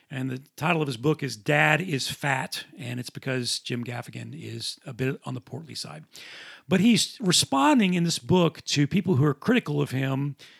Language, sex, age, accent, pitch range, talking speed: English, male, 40-59, American, 145-180 Hz, 200 wpm